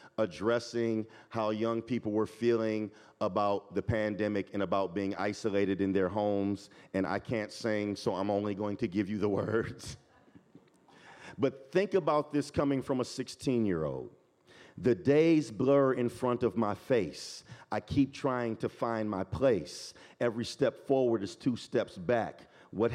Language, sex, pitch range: English, male, 105-125 Hz